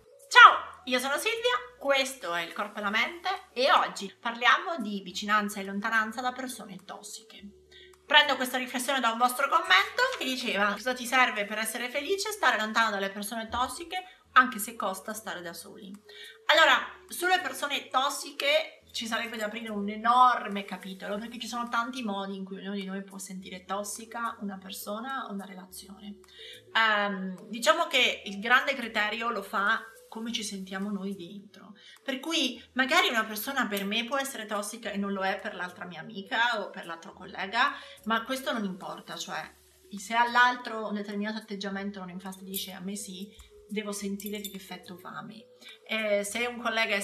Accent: native